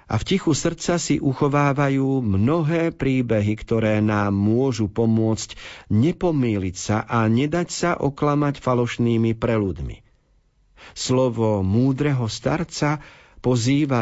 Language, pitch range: Slovak, 105-135 Hz